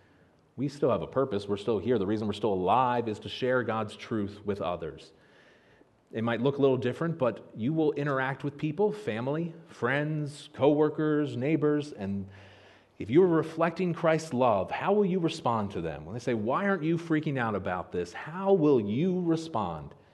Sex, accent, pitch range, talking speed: male, American, 100-150 Hz, 185 wpm